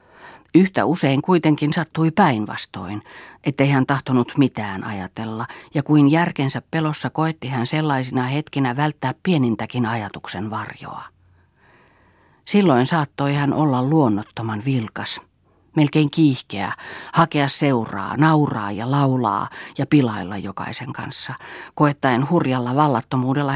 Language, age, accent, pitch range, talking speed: Finnish, 40-59, native, 120-155 Hz, 105 wpm